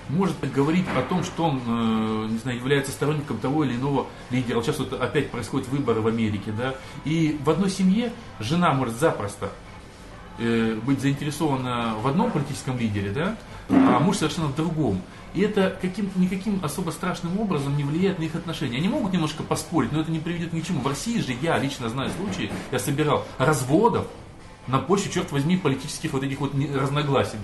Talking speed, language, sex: 165 wpm, Russian, male